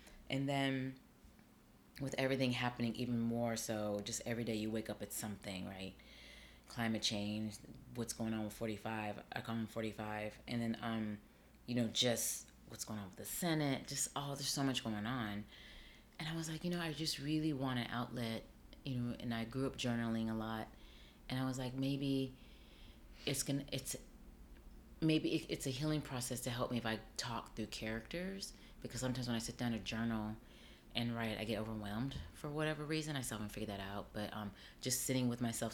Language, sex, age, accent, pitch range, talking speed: English, female, 30-49, American, 105-130 Hz, 200 wpm